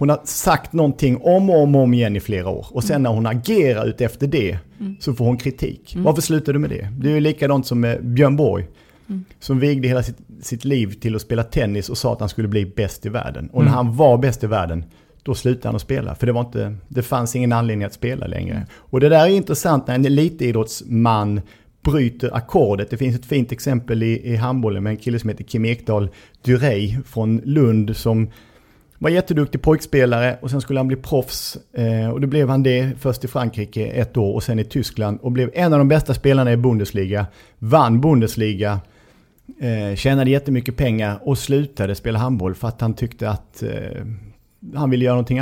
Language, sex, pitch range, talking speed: English, male, 110-135 Hz, 210 wpm